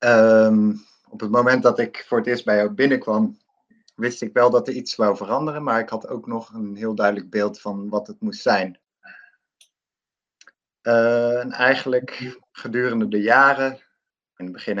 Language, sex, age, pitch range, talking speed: Dutch, male, 50-69, 100-135 Hz, 175 wpm